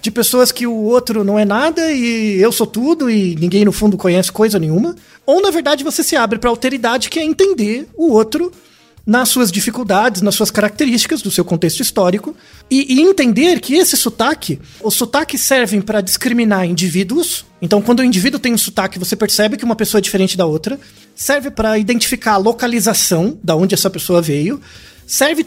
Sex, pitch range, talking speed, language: male, 195-270 Hz, 190 wpm, Portuguese